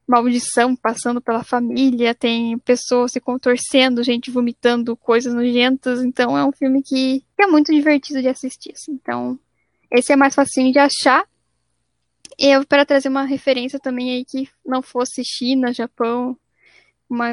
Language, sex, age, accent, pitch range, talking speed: Portuguese, female, 10-29, Brazilian, 245-280 Hz, 150 wpm